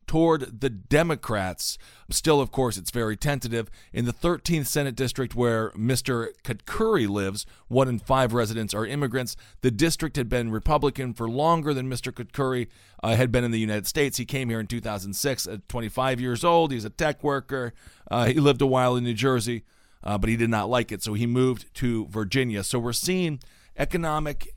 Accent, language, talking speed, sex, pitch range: American, English, 190 wpm, male, 105-130 Hz